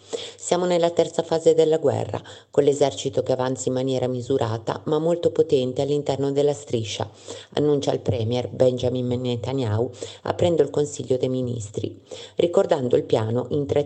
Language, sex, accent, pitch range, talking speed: Italian, female, native, 125-155 Hz, 145 wpm